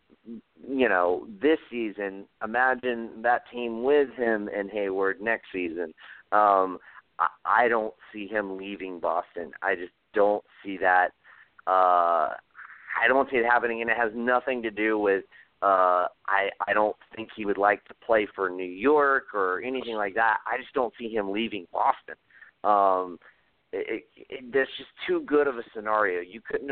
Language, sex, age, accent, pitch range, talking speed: English, male, 40-59, American, 95-125 Hz, 170 wpm